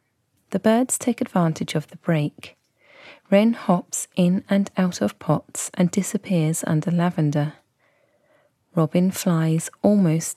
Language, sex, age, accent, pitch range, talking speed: English, female, 30-49, British, 160-190 Hz, 120 wpm